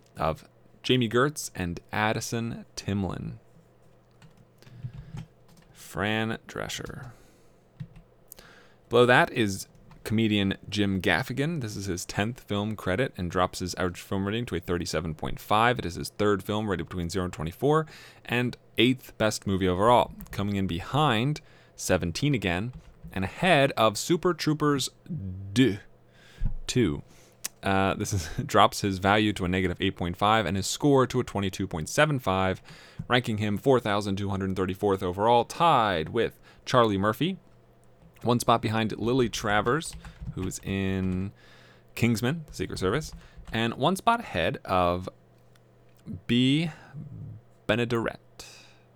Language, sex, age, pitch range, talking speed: English, male, 20-39, 95-130 Hz, 115 wpm